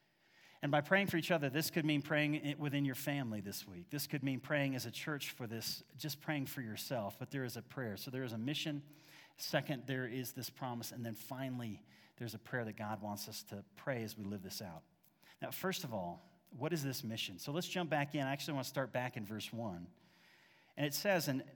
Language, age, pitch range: English, 40-59, 115-155 Hz